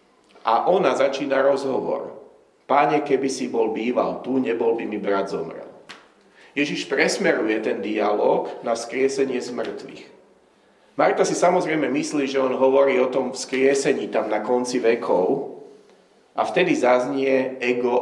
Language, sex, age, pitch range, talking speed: Slovak, male, 40-59, 110-140 Hz, 135 wpm